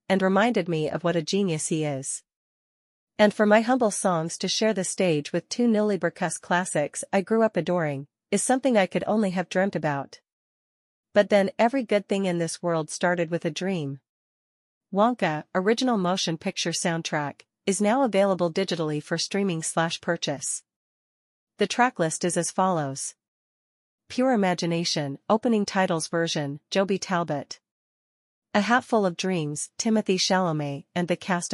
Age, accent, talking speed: 40-59, American, 150 wpm